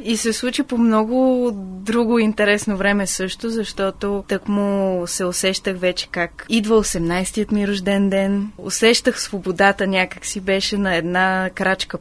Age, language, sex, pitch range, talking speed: 20-39, Bulgarian, female, 185-225 Hz, 140 wpm